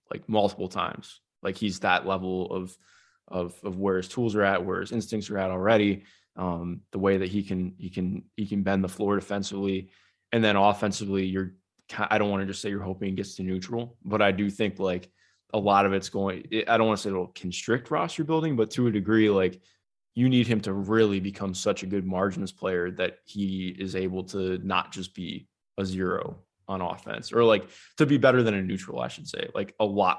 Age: 20-39